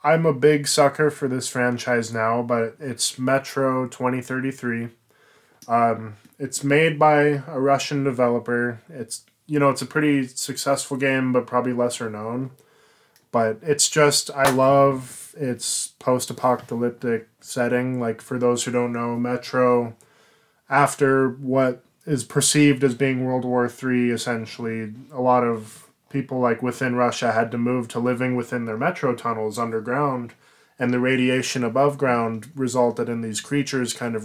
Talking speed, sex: 145 wpm, male